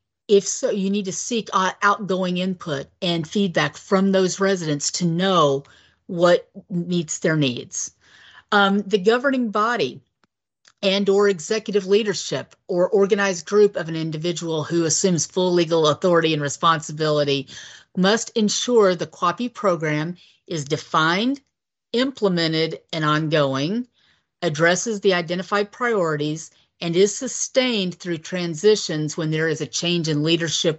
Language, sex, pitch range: English, female, 160-200 Hz